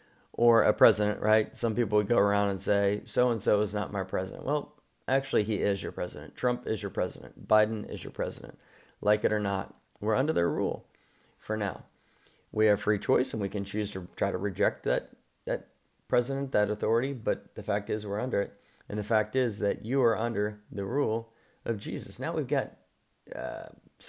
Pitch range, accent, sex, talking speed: 100-115 Hz, American, male, 200 wpm